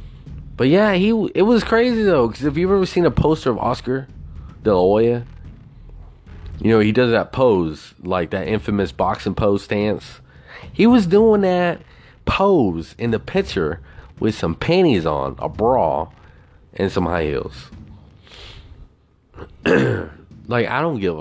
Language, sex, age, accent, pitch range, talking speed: English, male, 30-49, American, 80-110 Hz, 145 wpm